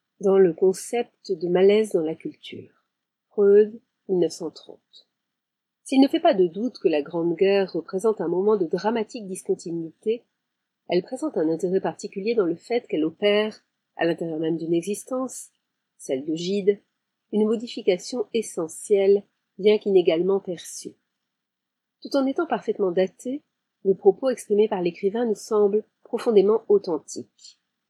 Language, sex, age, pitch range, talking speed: French, female, 40-59, 180-235 Hz, 140 wpm